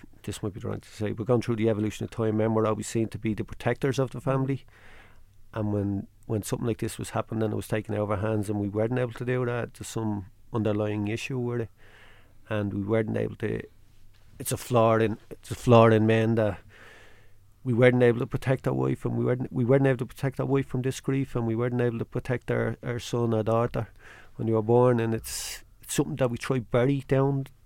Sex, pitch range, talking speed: male, 105-125 Hz, 240 wpm